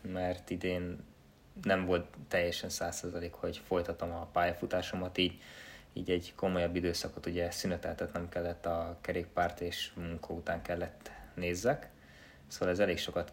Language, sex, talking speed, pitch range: Hungarian, male, 125 wpm, 85-95 Hz